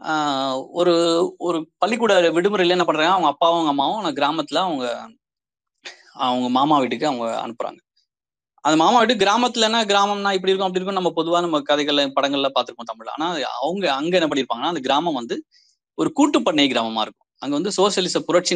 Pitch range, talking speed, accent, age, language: 125-190 Hz, 165 wpm, native, 20-39, Tamil